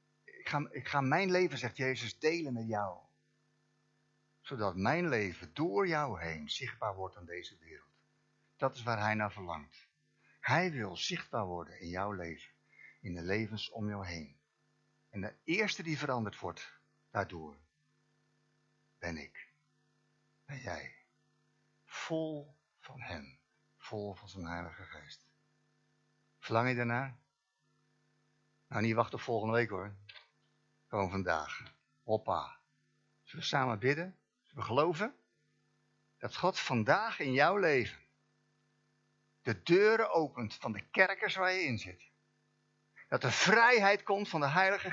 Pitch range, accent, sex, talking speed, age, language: 100-150 Hz, Dutch, male, 135 wpm, 60-79, Dutch